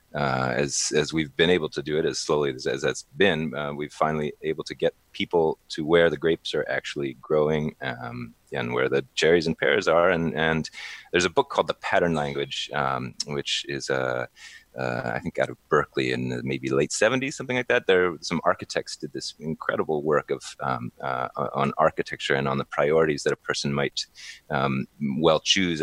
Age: 30-49